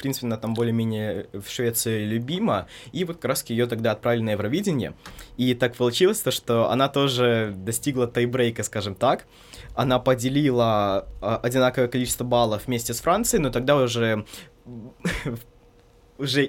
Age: 20-39